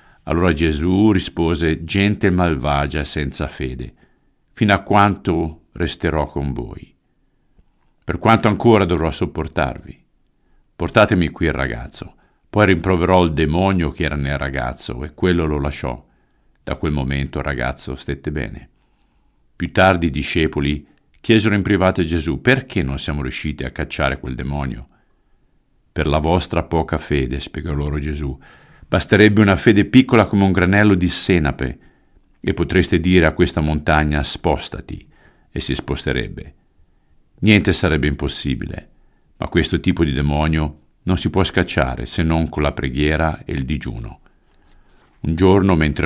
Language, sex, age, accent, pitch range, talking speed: Italian, male, 50-69, native, 70-90 Hz, 140 wpm